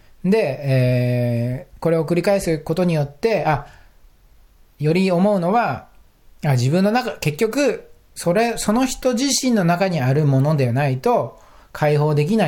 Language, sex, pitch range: Japanese, male, 115-165 Hz